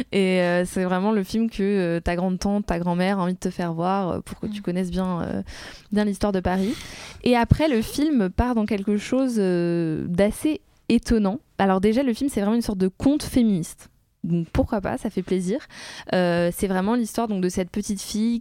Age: 20-39